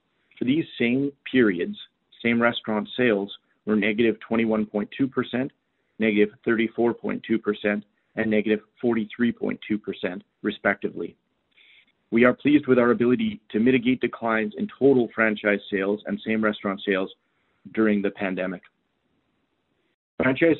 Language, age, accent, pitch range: English, 40-59, American, 105-125 Hz